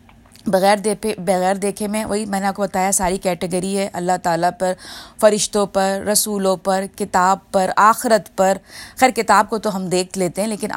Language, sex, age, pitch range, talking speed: Urdu, female, 20-39, 190-240 Hz, 190 wpm